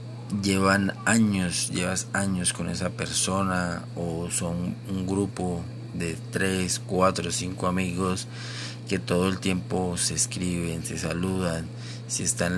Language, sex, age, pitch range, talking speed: Spanish, male, 40-59, 85-100 Hz, 125 wpm